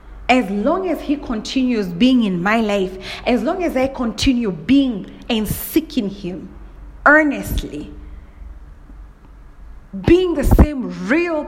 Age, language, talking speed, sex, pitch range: 30-49, English, 120 wpm, female, 185-260 Hz